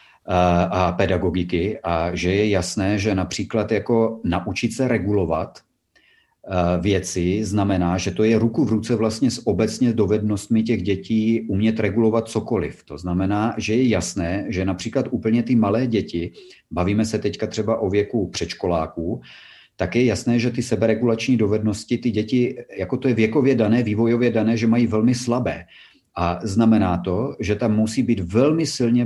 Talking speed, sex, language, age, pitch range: 155 wpm, male, Czech, 40-59, 100-120 Hz